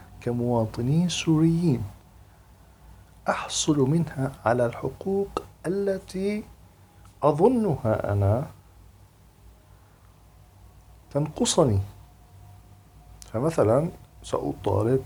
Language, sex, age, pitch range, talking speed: Arabic, male, 50-69, 95-135 Hz, 50 wpm